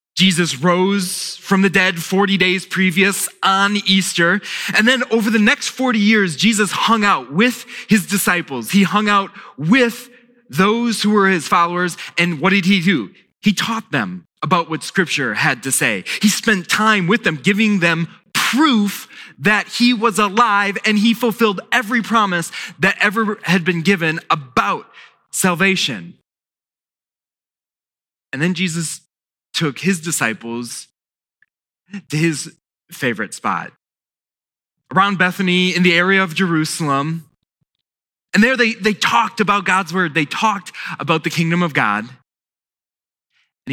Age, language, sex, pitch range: 20-39, English, male, 165-210 Hz